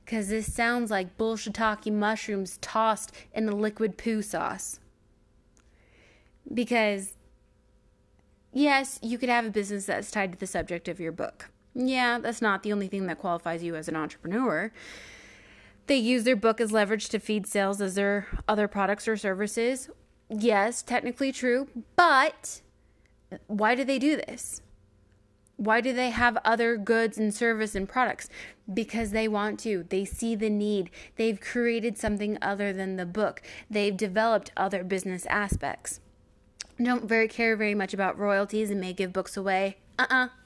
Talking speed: 160 wpm